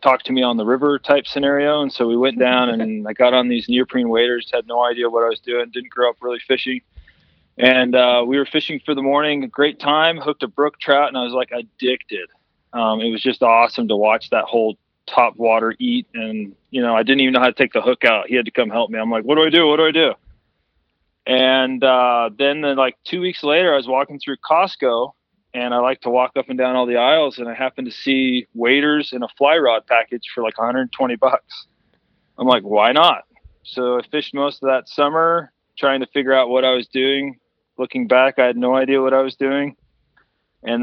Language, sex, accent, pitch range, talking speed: English, male, American, 120-140 Hz, 235 wpm